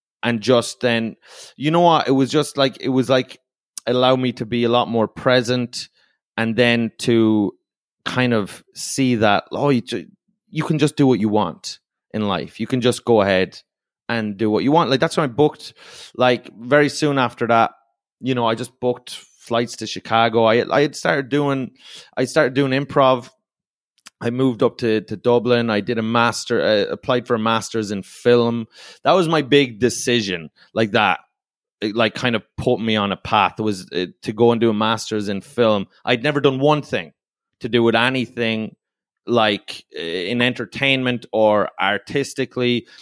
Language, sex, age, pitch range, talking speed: English, male, 30-49, 115-135 Hz, 185 wpm